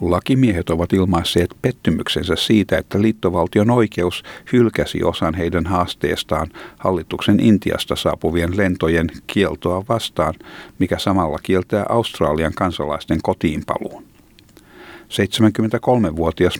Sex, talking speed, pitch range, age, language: male, 90 wpm, 85-105 Hz, 60-79, Finnish